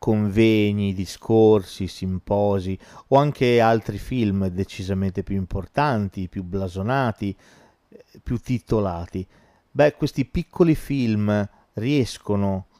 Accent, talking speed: native, 90 wpm